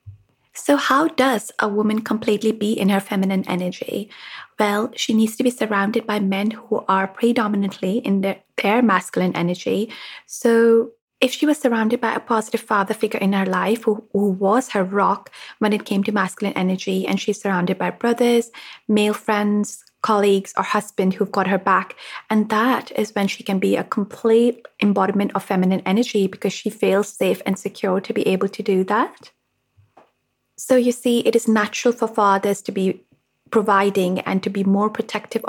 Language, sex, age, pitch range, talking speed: English, female, 20-39, 195-230 Hz, 180 wpm